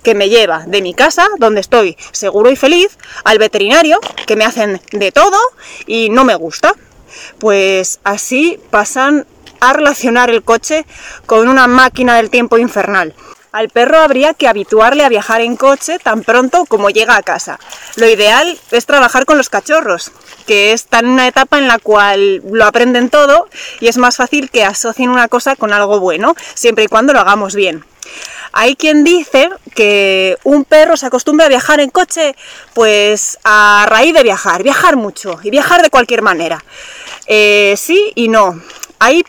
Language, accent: Spanish, Spanish